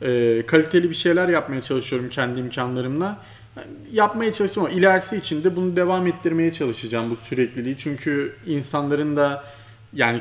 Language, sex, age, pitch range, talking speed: Turkish, male, 30-49, 120-160 Hz, 145 wpm